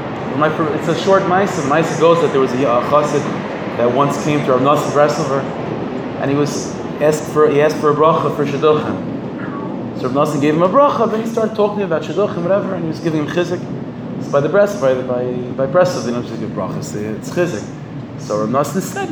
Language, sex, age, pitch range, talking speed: English, male, 20-39, 120-150 Hz, 215 wpm